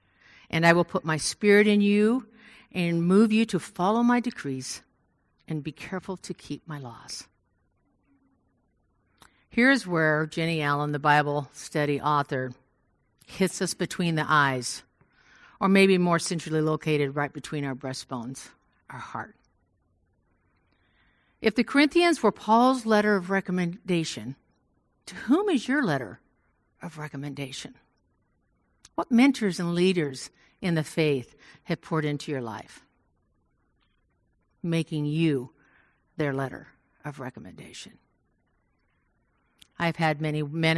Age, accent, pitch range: 50-69, American, 145-185 Hz